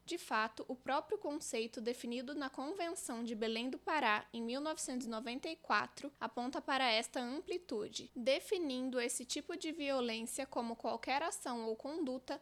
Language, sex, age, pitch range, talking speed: Portuguese, female, 10-29, 235-300 Hz, 135 wpm